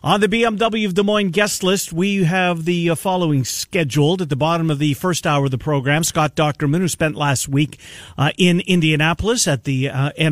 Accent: American